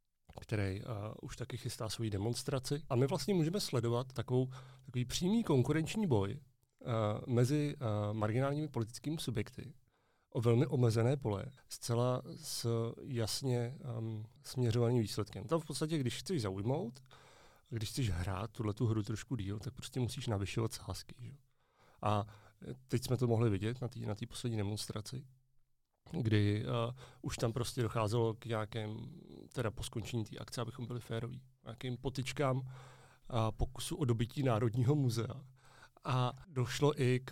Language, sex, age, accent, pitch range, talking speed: Czech, male, 40-59, native, 110-130 Hz, 145 wpm